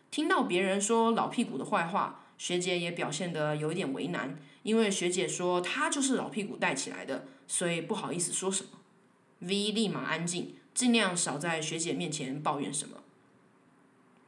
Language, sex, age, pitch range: Chinese, female, 20-39, 165-215 Hz